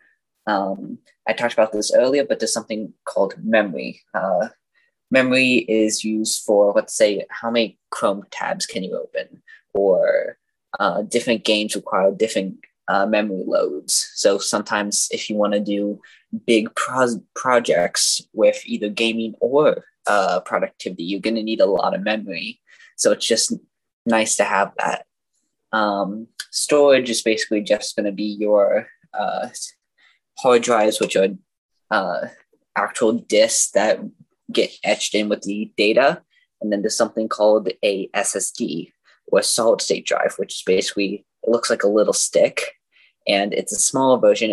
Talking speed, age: 150 wpm, 10-29